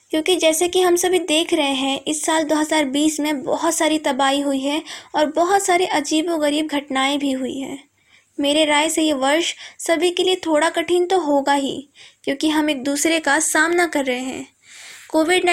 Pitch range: 280-325 Hz